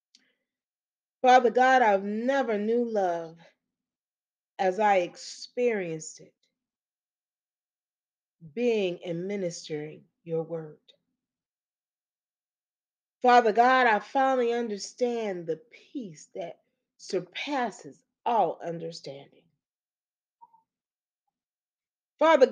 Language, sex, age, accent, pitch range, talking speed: English, female, 40-59, American, 205-295 Hz, 70 wpm